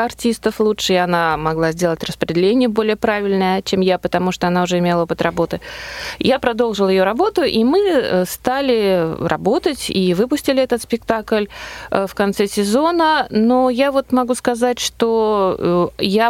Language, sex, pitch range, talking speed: Russian, female, 175-225 Hz, 145 wpm